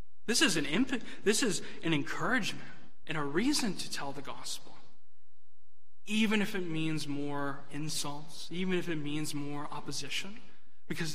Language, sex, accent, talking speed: English, male, American, 150 wpm